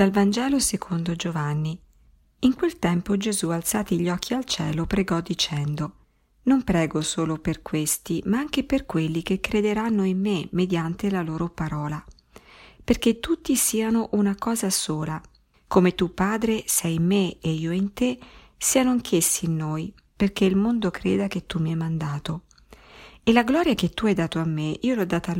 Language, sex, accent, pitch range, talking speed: Italian, female, native, 165-215 Hz, 175 wpm